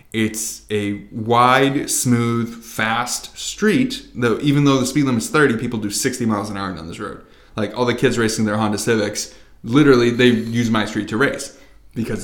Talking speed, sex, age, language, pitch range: 190 wpm, male, 20-39, English, 110-140 Hz